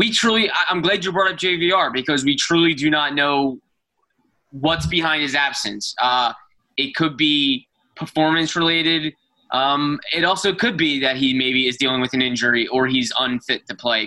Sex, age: male, 20-39